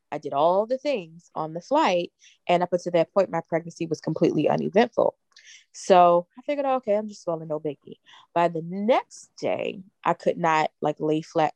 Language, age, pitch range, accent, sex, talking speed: English, 20-39, 155-200 Hz, American, female, 190 wpm